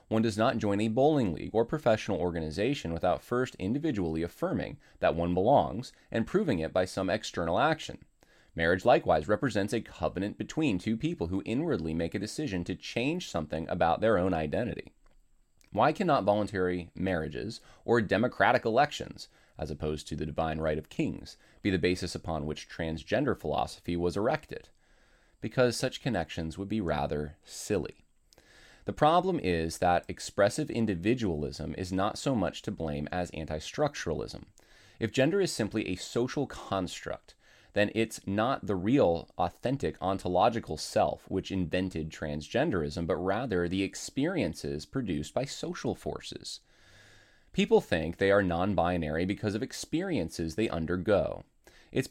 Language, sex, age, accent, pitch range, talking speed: English, male, 20-39, American, 80-110 Hz, 145 wpm